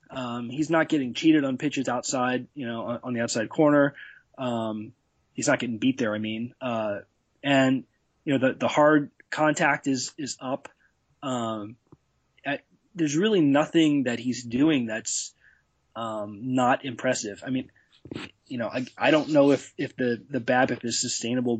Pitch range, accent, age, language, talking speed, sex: 120-150 Hz, American, 20-39, English, 170 wpm, male